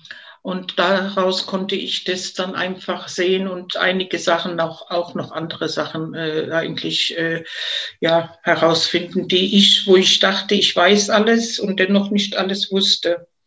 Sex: female